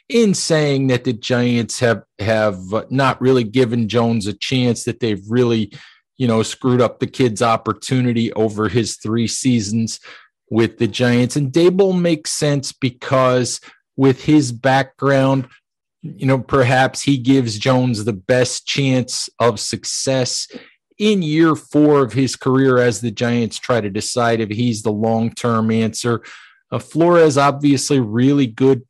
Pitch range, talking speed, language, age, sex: 115-130 Hz, 150 wpm, English, 40-59, male